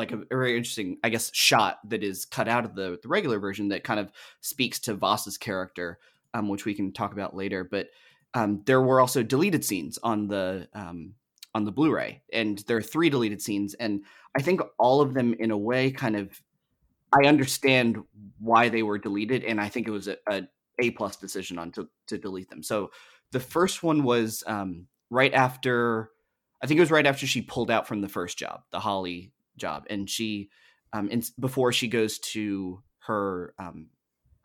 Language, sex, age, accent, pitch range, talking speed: English, male, 30-49, American, 100-120 Hz, 200 wpm